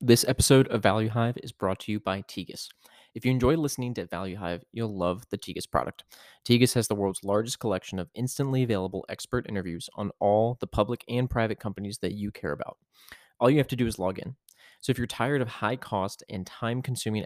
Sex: male